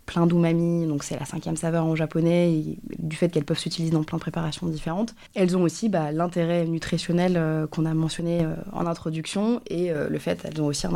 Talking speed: 225 wpm